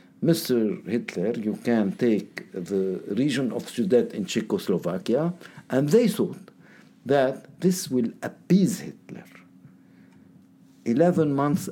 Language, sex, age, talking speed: English, male, 60-79, 110 wpm